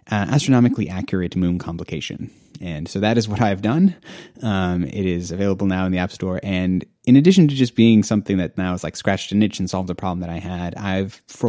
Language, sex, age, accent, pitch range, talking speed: English, male, 30-49, American, 90-110 Hz, 230 wpm